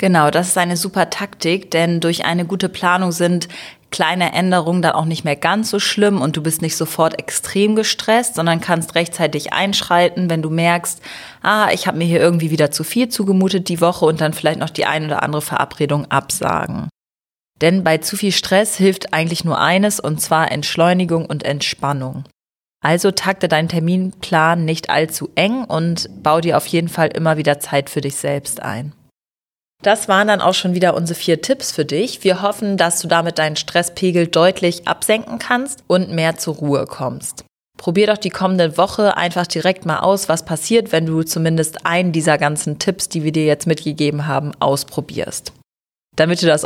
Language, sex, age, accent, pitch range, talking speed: German, female, 30-49, German, 155-185 Hz, 185 wpm